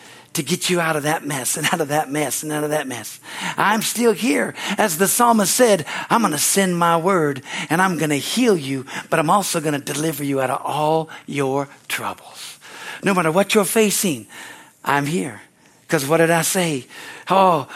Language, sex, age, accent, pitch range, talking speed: English, male, 60-79, American, 170-270 Hz, 205 wpm